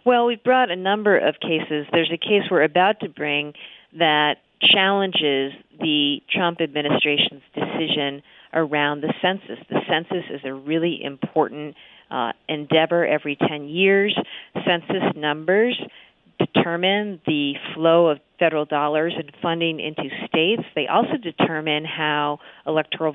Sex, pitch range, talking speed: female, 150-205 Hz, 130 wpm